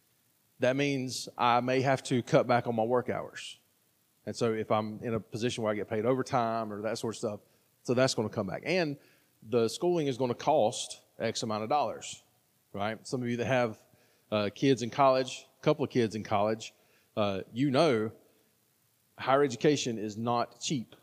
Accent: American